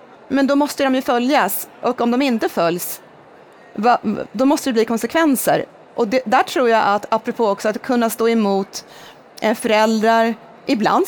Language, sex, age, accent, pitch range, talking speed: Swedish, female, 30-49, native, 200-260 Hz, 160 wpm